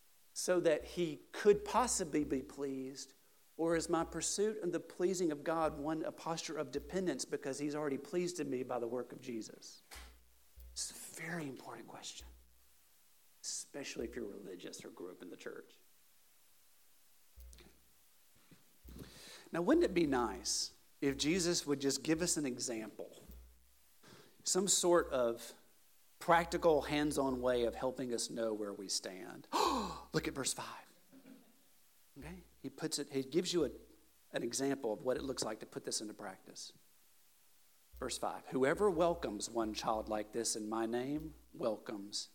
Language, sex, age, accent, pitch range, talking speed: English, male, 50-69, American, 105-165 Hz, 155 wpm